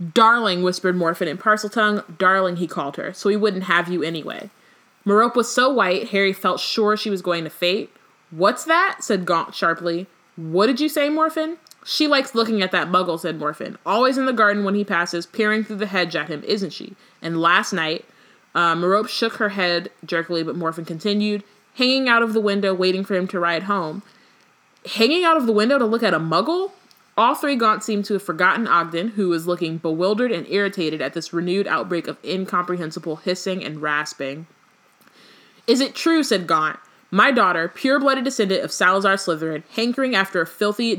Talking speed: 195 wpm